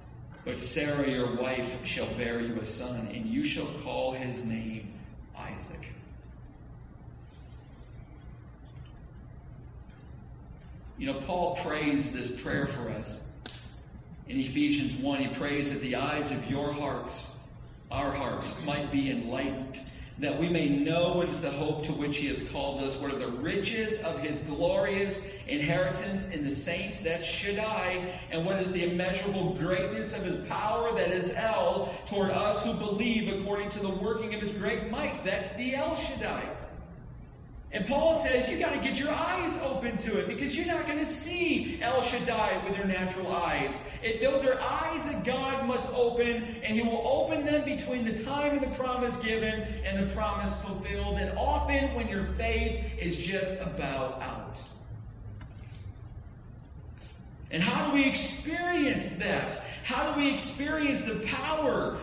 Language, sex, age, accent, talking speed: English, male, 40-59, American, 160 wpm